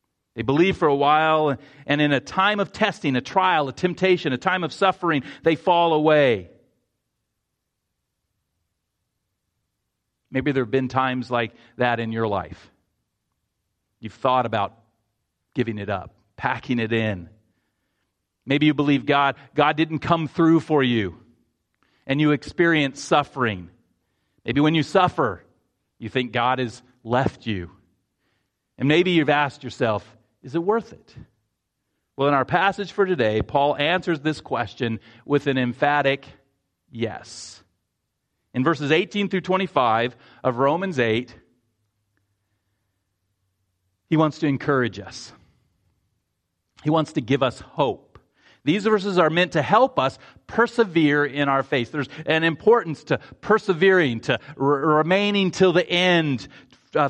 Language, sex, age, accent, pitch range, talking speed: English, male, 40-59, American, 110-160 Hz, 135 wpm